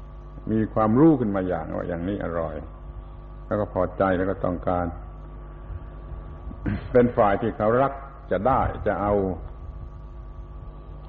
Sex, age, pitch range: male, 70-89, 80-110 Hz